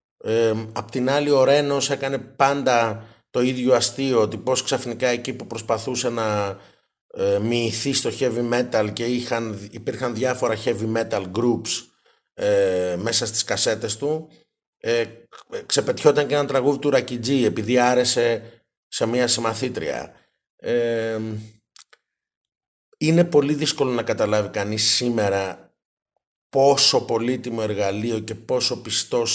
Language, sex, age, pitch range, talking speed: Greek, male, 30-49, 115-135 Hz, 125 wpm